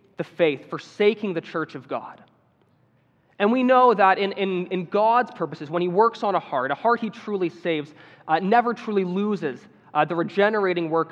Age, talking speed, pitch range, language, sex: 20-39, 185 wpm, 160-210 Hz, English, male